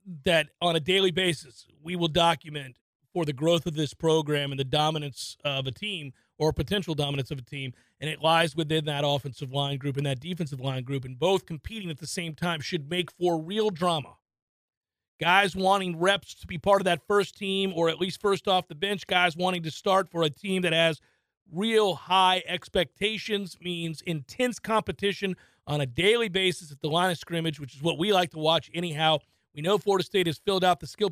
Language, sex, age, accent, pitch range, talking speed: English, male, 40-59, American, 150-185 Hz, 210 wpm